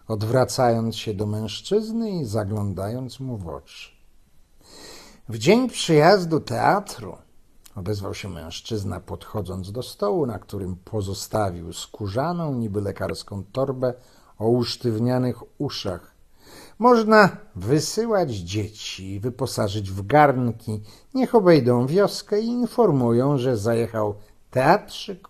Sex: male